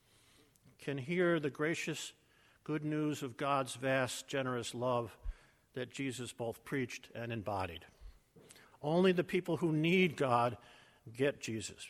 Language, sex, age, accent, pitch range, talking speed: English, male, 50-69, American, 120-155 Hz, 125 wpm